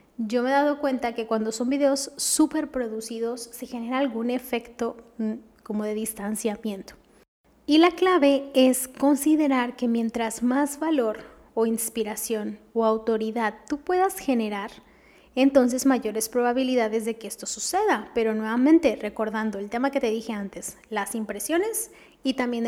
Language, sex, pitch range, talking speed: Spanish, female, 225-275 Hz, 145 wpm